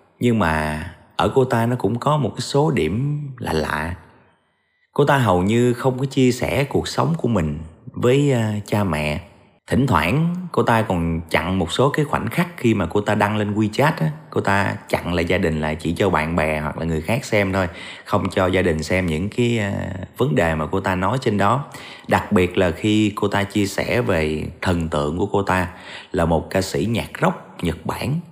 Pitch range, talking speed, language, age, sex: 85-120 Hz, 215 wpm, Vietnamese, 30-49, male